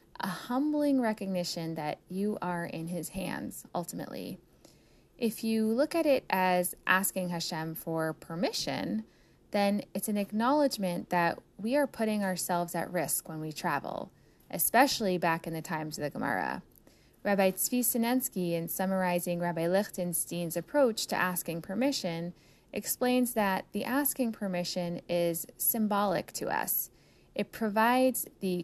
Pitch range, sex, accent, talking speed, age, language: 175-235 Hz, female, American, 135 wpm, 10-29, English